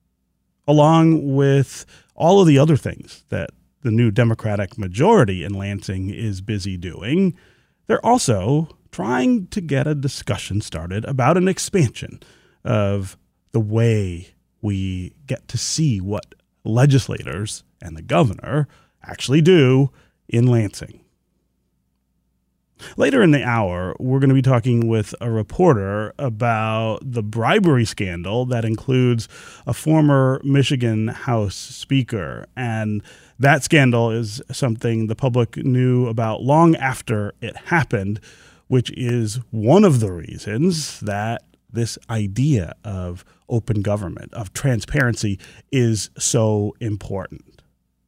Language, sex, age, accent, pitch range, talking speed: English, male, 30-49, American, 105-140 Hz, 120 wpm